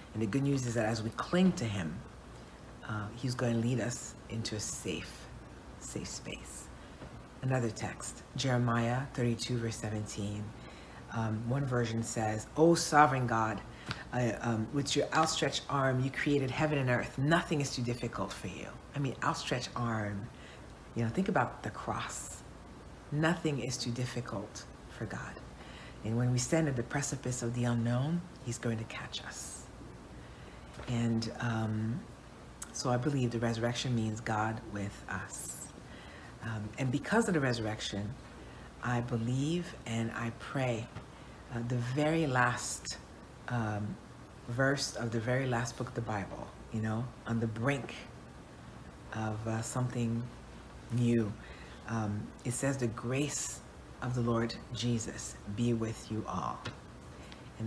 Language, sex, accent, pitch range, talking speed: English, female, American, 110-125 Hz, 150 wpm